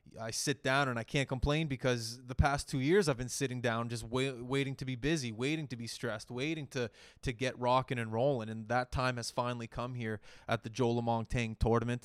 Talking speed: 225 wpm